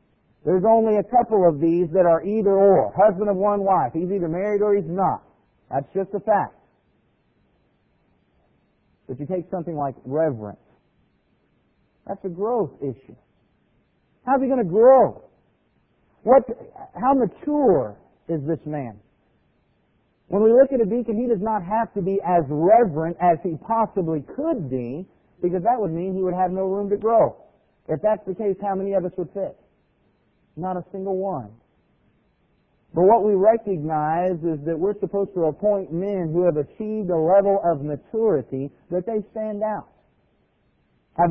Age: 50-69